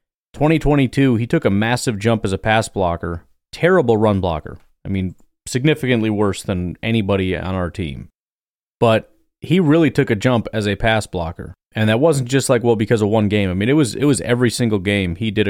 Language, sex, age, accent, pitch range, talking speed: English, male, 30-49, American, 95-120 Hz, 205 wpm